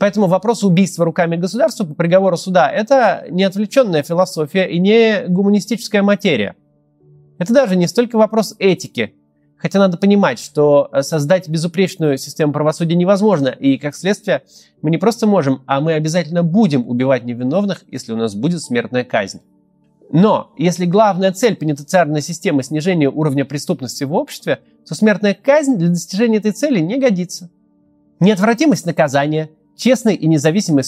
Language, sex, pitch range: Russian, male, 135-200 Hz